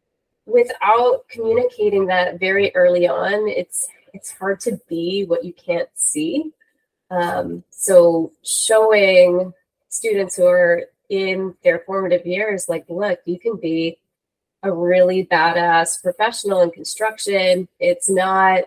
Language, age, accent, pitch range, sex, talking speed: English, 20-39, American, 170-220 Hz, female, 120 wpm